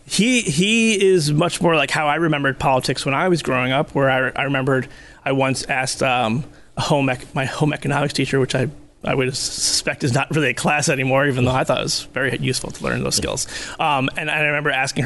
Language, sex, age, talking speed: English, male, 30-49, 235 wpm